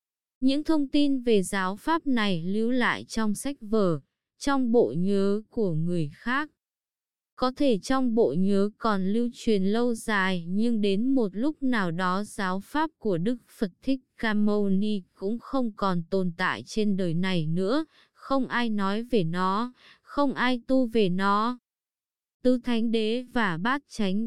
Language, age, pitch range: Vietnamese, 20-39, 195-250 Hz